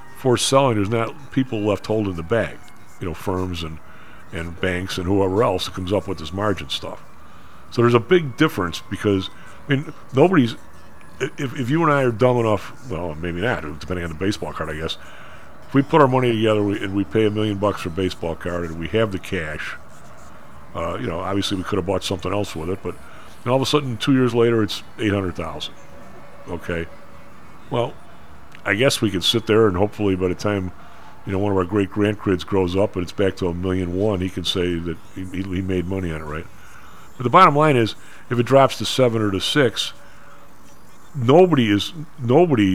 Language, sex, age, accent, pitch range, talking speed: English, male, 50-69, American, 90-115 Hz, 215 wpm